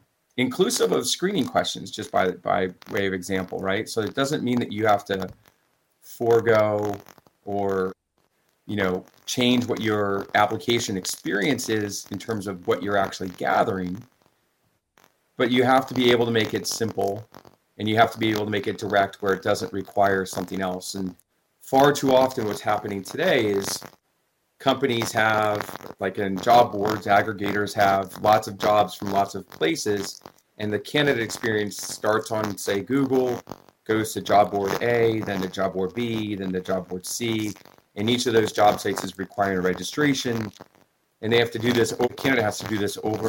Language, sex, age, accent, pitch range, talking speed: English, male, 30-49, American, 95-115 Hz, 185 wpm